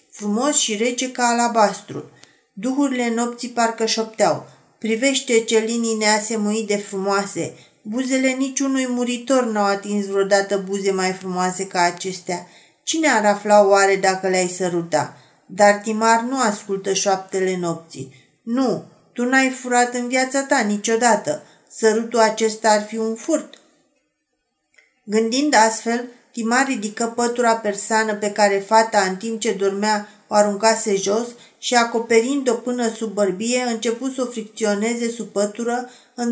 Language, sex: Romanian, female